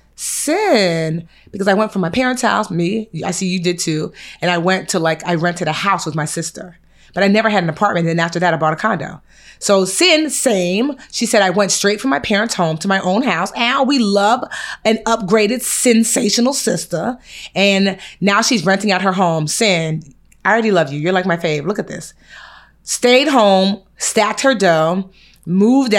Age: 30-49